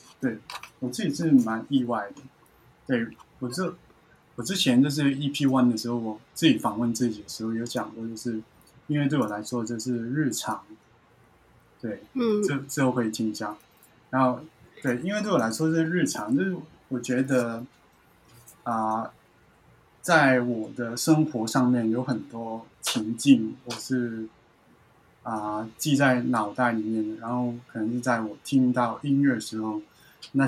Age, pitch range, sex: 20-39, 115-130 Hz, male